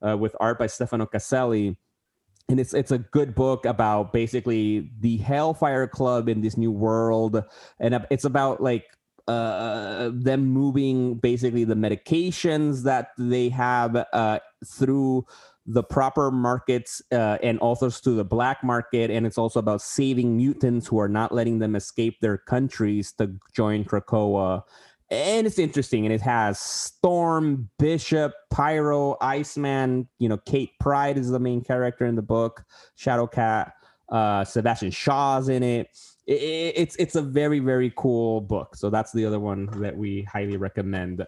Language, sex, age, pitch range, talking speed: English, male, 30-49, 110-135 Hz, 155 wpm